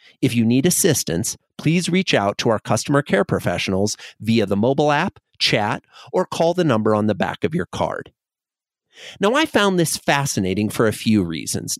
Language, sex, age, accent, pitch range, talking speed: English, male, 40-59, American, 115-190 Hz, 185 wpm